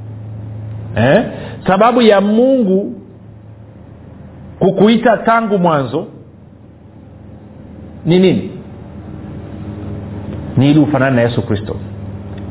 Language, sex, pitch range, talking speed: Swahili, male, 135-205 Hz, 65 wpm